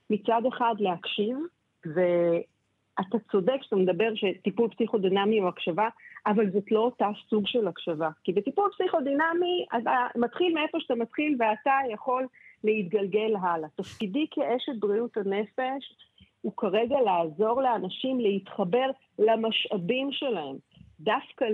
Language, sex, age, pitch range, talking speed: Hebrew, female, 50-69, 200-260 Hz, 115 wpm